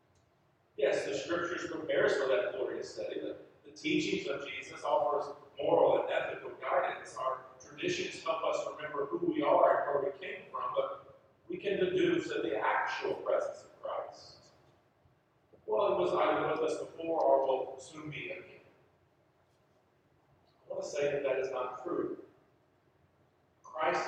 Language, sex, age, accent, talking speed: English, male, 40-59, American, 160 wpm